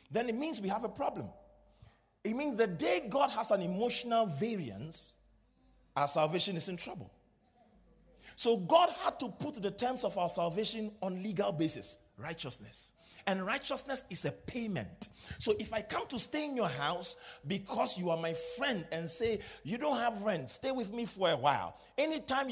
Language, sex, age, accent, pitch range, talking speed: English, male, 40-59, Nigerian, 160-240 Hz, 180 wpm